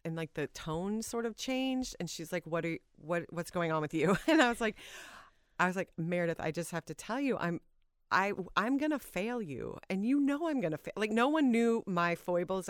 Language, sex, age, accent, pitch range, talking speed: English, female, 40-59, American, 165-205 Hz, 250 wpm